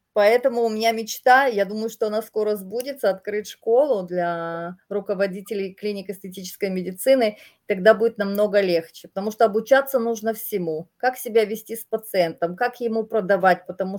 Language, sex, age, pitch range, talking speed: English, female, 30-49, 190-235 Hz, 150 wpm